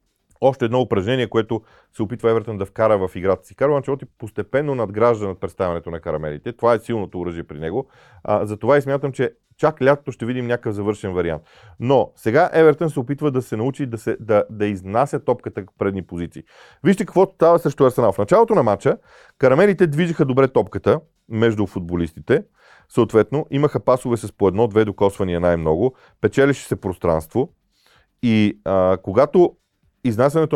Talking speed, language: 170 wpm, Bulgarian